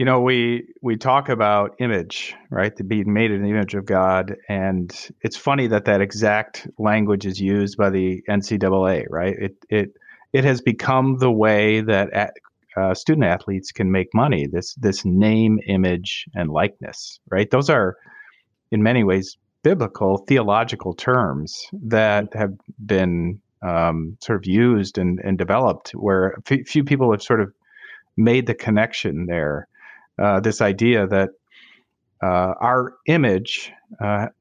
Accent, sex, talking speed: American, male, 155 wpm